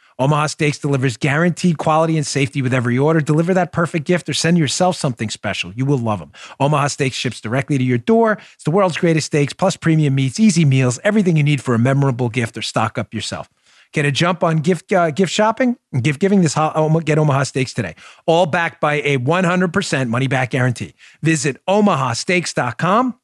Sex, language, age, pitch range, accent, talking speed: male, English, 30-49, 130-180 Hz, American, 200 wpm